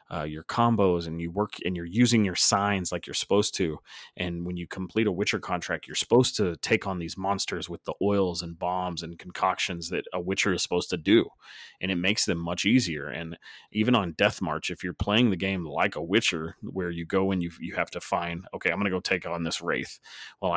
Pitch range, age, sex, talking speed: 85-105 Hz, 30-49, male, 235 wpm